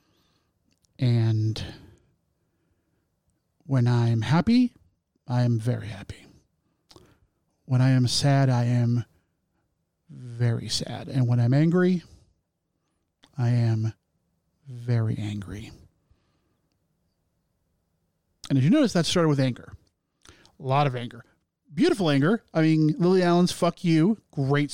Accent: American